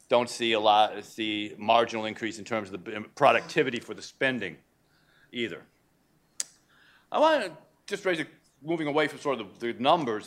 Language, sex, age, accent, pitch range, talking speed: English, male, 40-59, American, 120-185 Hz, 175 wpm